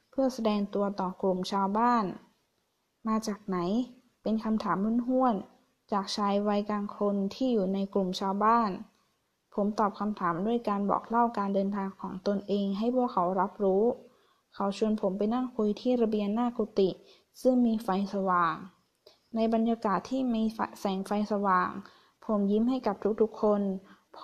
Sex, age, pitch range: female, 20-39, 190-225 Hz